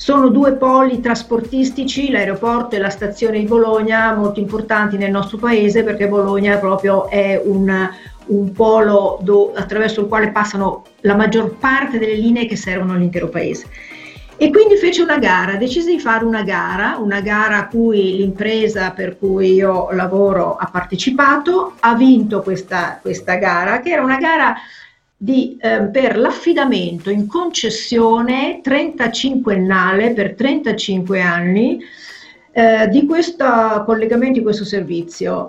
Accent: Italian